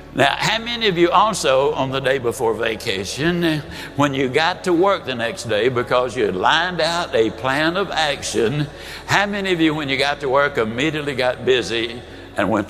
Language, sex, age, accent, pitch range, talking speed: English, male, 60-79, American, 120-170 Hz, 200 wpm